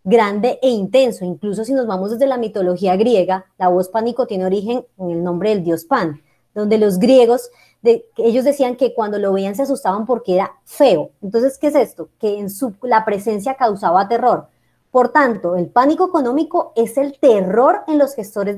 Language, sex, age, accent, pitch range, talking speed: Spanish, male, 30-49, Colombian, 220-275 Hz, 180 wpm